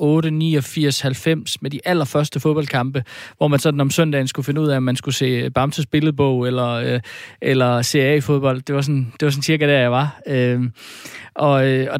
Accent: native